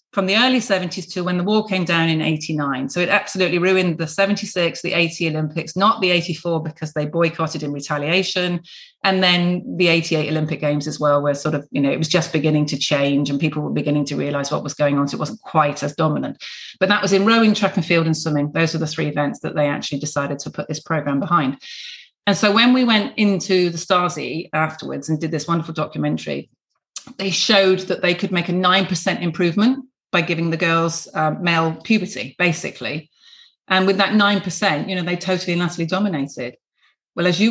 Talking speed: 215 wpm